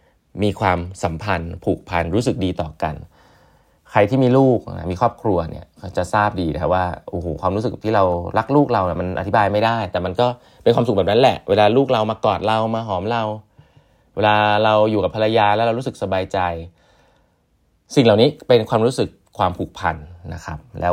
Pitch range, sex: 90-115 Hz, male